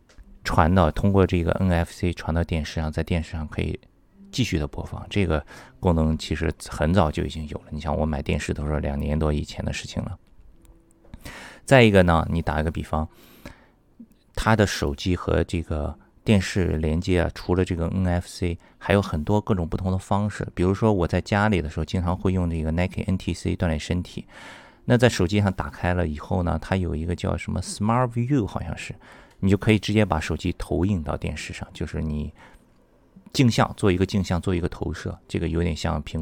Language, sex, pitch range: Chinese, male, 80-100 Hz